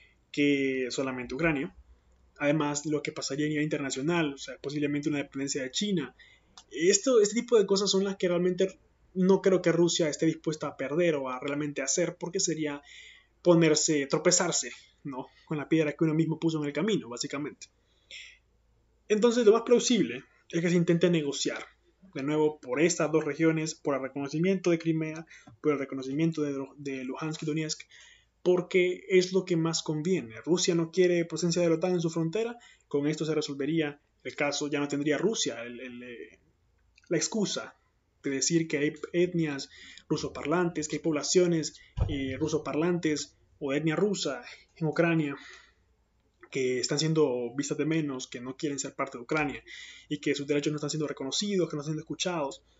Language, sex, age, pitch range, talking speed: Spanish, male, 20-39, 145-175 Hz, 175 wpm